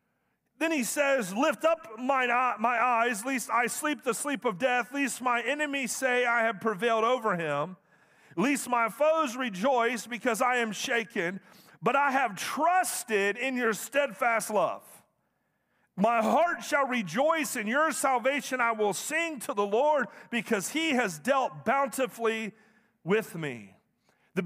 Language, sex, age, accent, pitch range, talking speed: English, male, 40-59, American, 205-265 Hz, 150 wpm